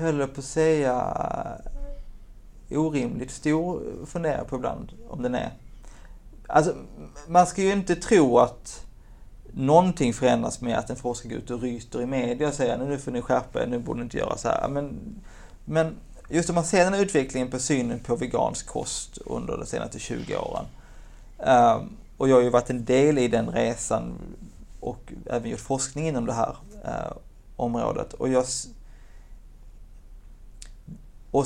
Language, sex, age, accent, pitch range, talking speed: Swedish, male, 30-49, native, 120-155 Hz, 160 wpm